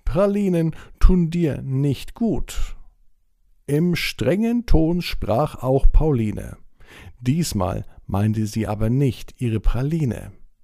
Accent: German